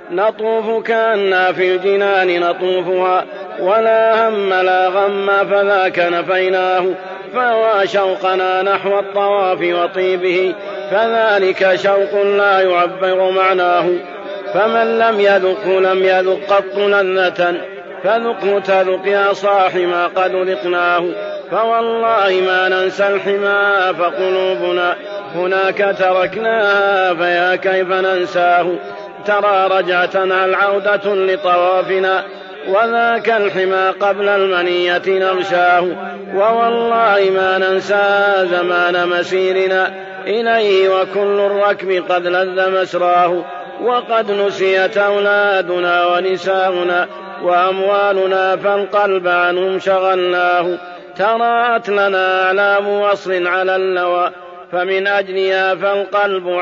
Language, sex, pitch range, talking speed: Arabic, male, 185-200 Hz, 85 wpm